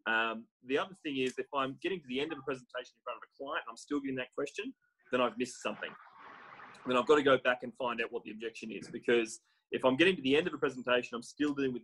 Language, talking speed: English, 285 wpm